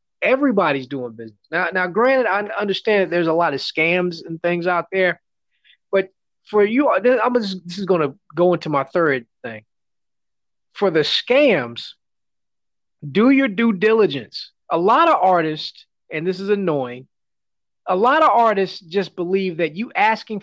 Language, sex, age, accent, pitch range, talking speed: English, male, 30-49, American, 165-230 Hz, 165 wpm